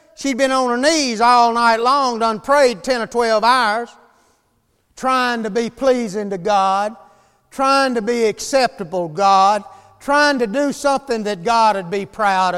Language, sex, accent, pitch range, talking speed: English, male, American, 225-275 Hz, 165 wpm